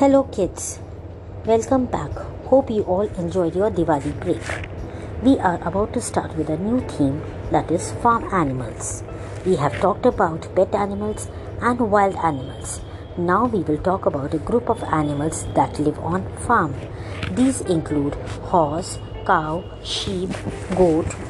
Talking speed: 145 wpm